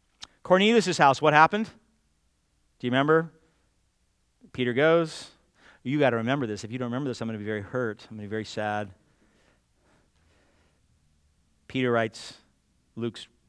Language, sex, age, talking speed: English, male, 40-59, 150 wpm